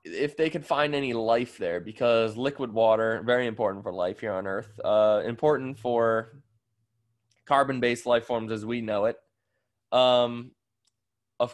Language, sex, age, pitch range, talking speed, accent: English, male, 20-39, 110-120 Hz, 150 wpm, American